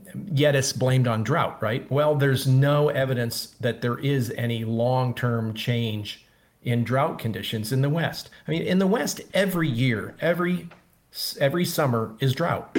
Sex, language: male, English